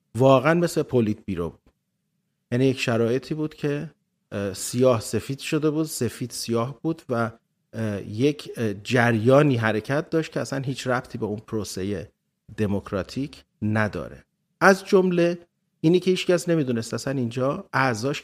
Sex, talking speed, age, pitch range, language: male, 130 wpm, 40-59, 115-170 Hz, Persian